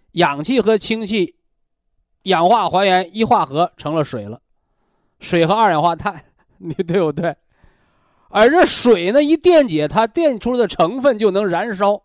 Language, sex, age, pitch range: Chinese, male, 20-39, 145-215 Hz